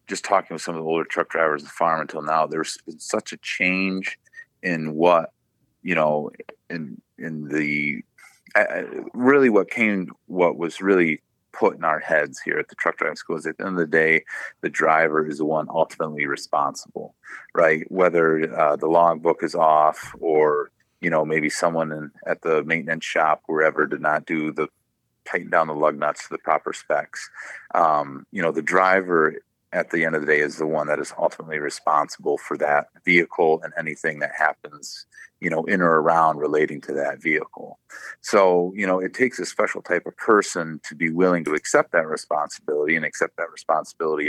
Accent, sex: American, male